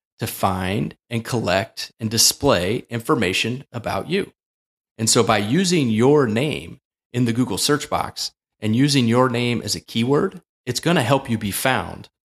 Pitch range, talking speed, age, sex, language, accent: 100-130 Hz, 160 wpm, 30-49, male, English, American